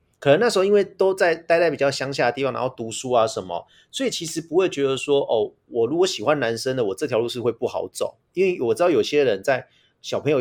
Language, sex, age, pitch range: Chinese, male, 30-49, 135-200 Hz